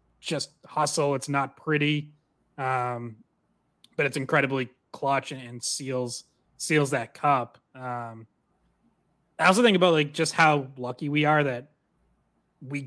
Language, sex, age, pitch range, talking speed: English, male, 20-39, 135-160 Hz, 135 wpm